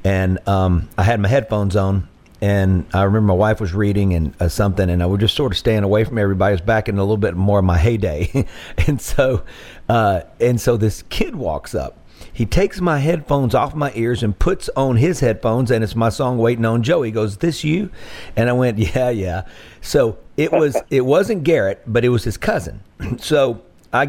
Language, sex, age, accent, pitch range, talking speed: English, male, 50-69, American, 105-135 Hz, 220 wpm